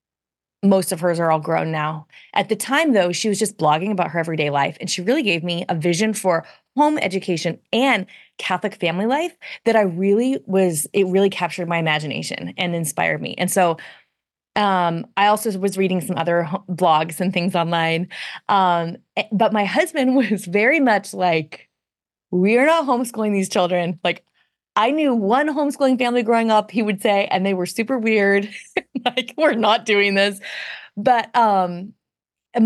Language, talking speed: English, 175 wpm